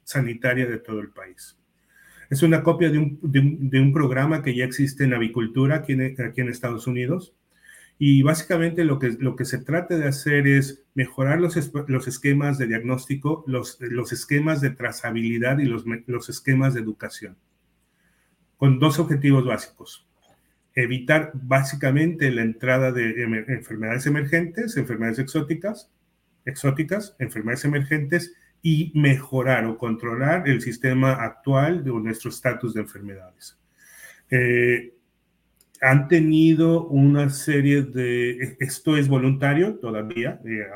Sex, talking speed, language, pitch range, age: male, 135 wpm, Spanish, 120-145 Hz, 40-59